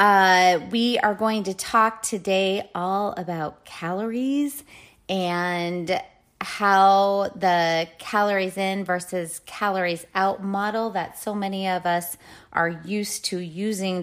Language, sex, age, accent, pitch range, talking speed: English, female, 30-49, American, 180-215 Hz, 120 wpm